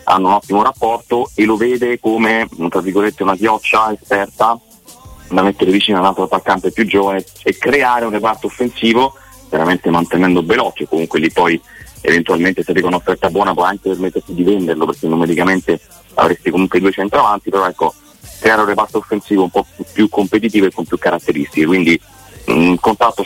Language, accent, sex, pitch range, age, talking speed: Italian, native, male, 85-105 Hz, 30-49, 175 wpm